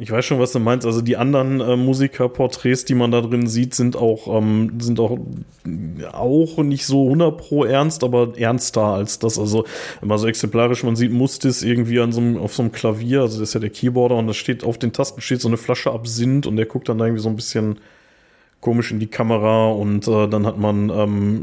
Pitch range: 110-125 Hz